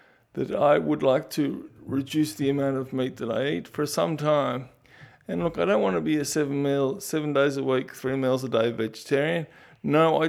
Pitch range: 145-180 Hz